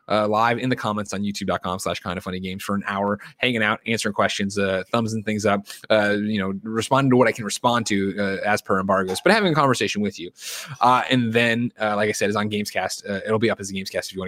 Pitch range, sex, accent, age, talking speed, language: 100-120 Hz, male, American, 20-39, 270 wpm, English